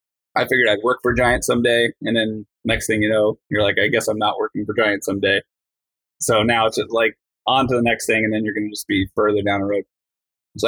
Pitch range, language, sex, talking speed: 105-120 Hz, English, male, 255 wpm